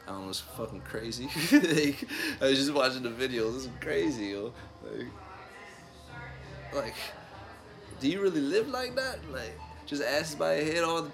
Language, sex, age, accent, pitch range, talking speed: English, male, 20-39, American, 105-135 Hz, 180 wpm